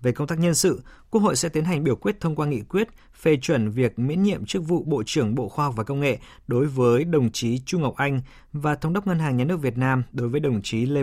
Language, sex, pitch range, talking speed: Vietnamese, male, 125-160 Hz, 285 wpm